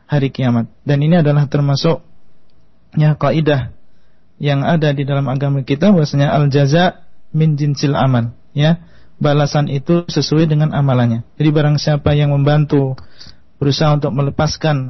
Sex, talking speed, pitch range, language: male, 130 wpm, 145-165 Hz, Indonesian